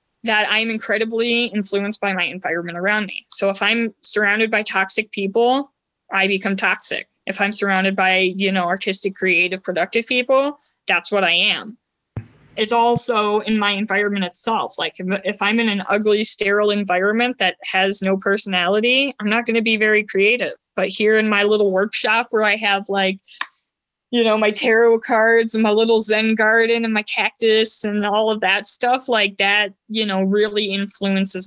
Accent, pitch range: American, 195-225 Hz